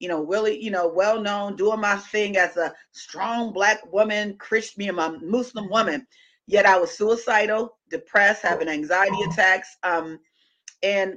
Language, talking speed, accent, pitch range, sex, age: English, 155 wpm, American, 170-215 Hz, female, 40-59